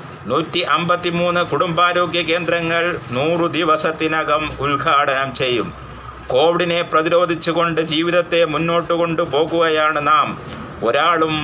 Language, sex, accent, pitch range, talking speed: Malayalam, male, native, 150-170 Hz, 80 wpm